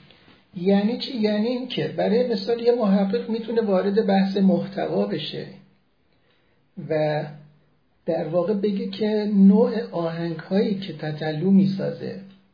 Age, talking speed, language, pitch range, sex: 60-79, 115 wpm, Persian, 170-210 Hz, male